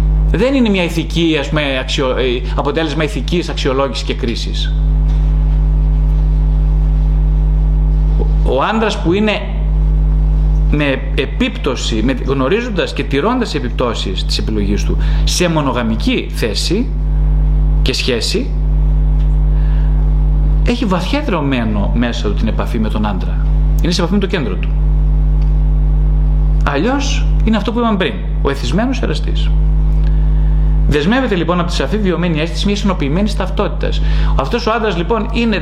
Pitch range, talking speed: 150-170 Hz, 120 wpm